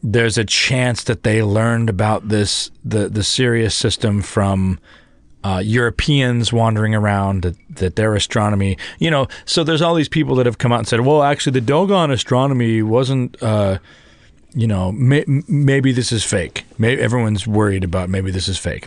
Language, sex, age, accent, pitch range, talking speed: English, male, 40-59, American, 95-125 Hz, 180 wpm